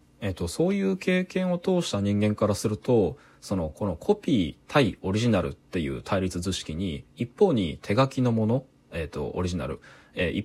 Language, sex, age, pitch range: Japanese, male, 20-39, 90-135 Hz